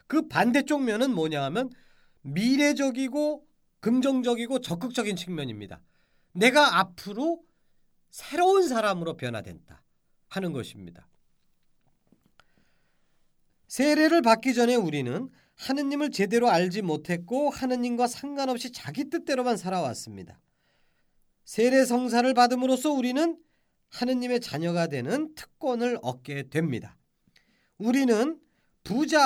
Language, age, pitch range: Korean, 40-59, 185-270 Hz